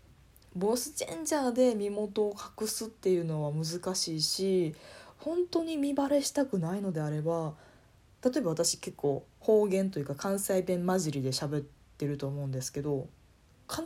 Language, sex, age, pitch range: Japanese, female, 20-39, 155-255 Hz